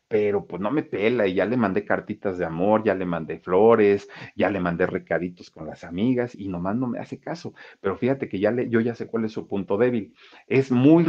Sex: male